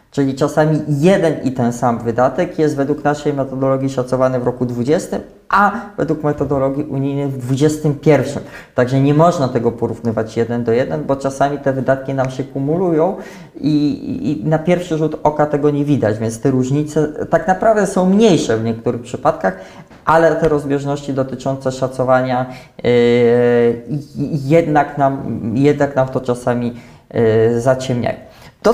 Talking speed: 140 wpm